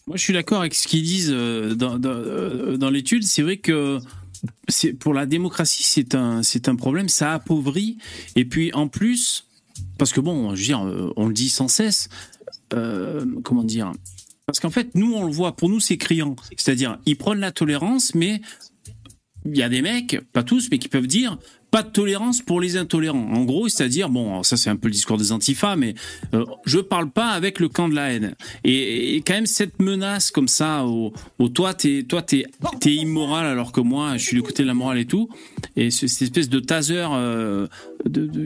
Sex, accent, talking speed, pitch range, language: male, French, 210 wpm, 125-195 Hz, French